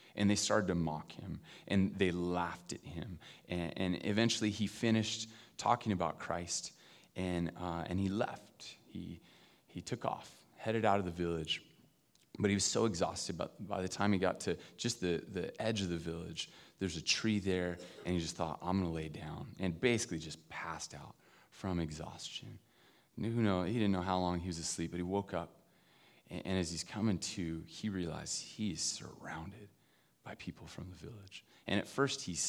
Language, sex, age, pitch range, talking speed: English, male, 30-49, 85-100 Hz, 195 wpm